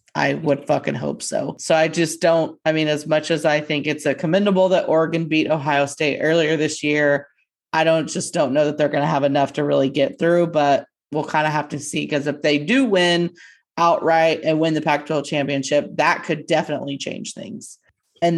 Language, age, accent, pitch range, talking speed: English, 30-49, American, 145-170 Hz, 215 wpm